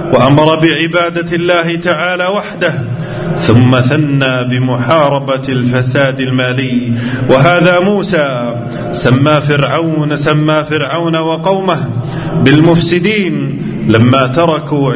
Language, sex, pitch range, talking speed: Arabic, male, 130-170 Hz, 75 wpm